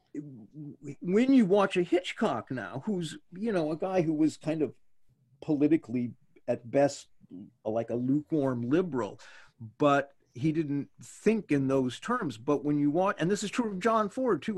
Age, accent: 50-69, American